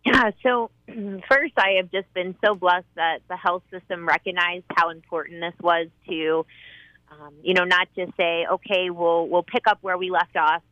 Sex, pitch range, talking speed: female, 170-195 Hz, 190 wpm